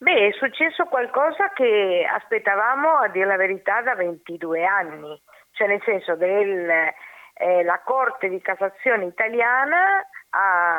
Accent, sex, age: native, female, 50-69